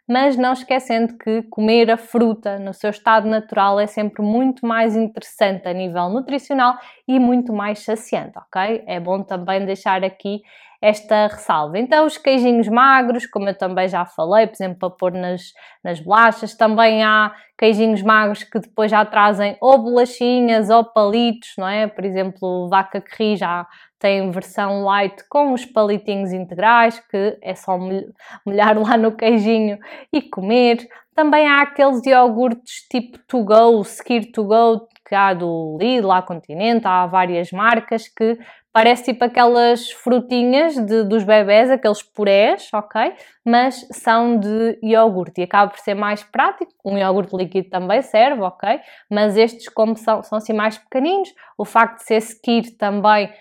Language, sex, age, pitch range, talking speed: Portuguese, female, 20-39, 200-235 Hz, 165 wpm